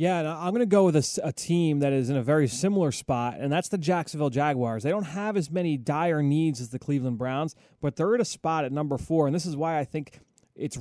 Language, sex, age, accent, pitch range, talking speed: English, male, 30-49, American, 130-160 Hz, 260 wpm